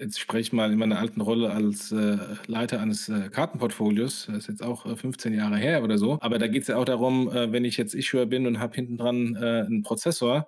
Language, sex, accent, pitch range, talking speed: German, male, German, 115-150 Hz, 250 wpm